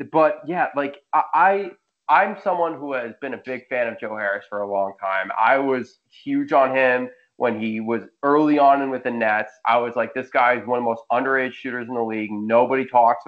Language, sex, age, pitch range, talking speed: English, male, 20-39, 120-160 Hz, 225 wpm